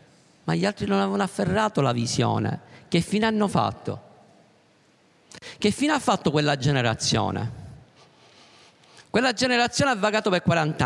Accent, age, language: native, 50-69, Italian